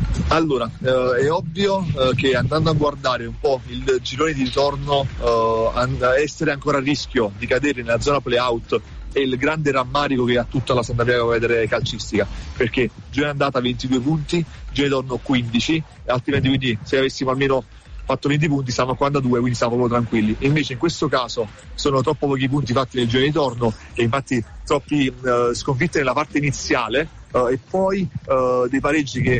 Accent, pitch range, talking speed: native, 120-140 Hz, 190 wpm